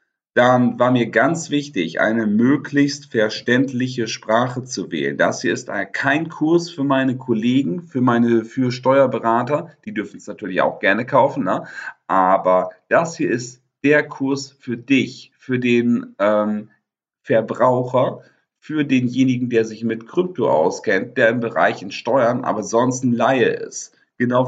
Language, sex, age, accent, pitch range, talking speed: German, male, 50-69, German, 110-135 Hz, 145 wpm